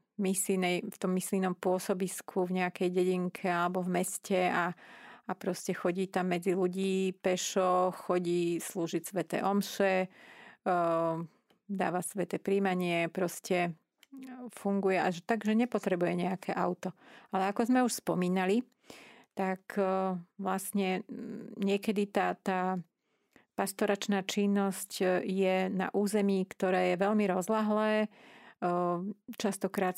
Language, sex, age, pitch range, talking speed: Slovak, female, 40-59, 180-205 Hz, 105 wpm